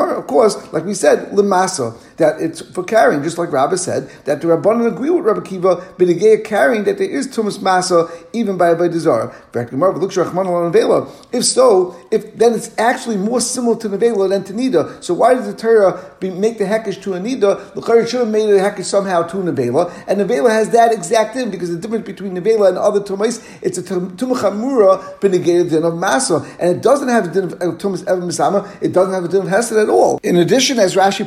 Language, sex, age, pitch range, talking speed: English, male, 50-69, 180-220 Hz, 210 wpm